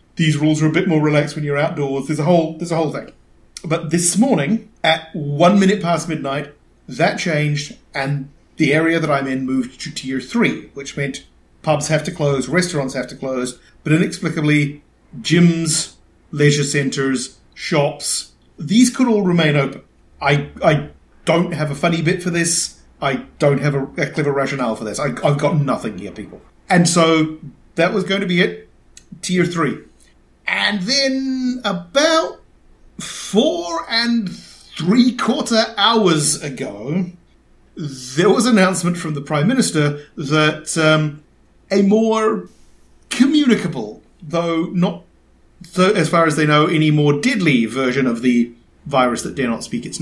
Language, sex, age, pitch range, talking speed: English, male, 40-59, 145-180 Hz, 160 wpm